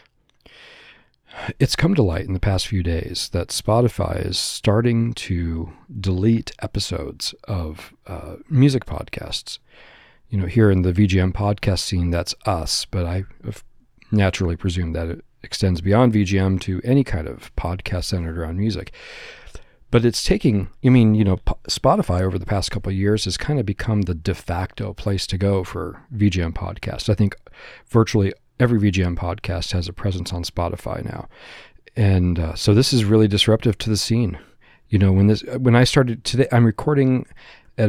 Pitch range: 90-110 Hz